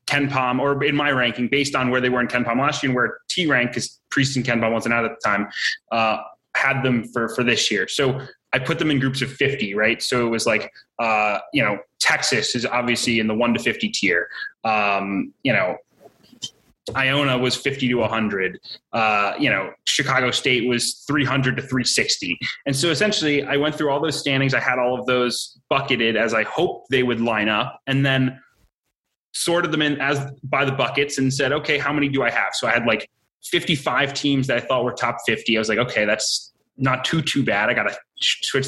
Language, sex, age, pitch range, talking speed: English, male, 20-39, 120-145 Hz, 220 wpm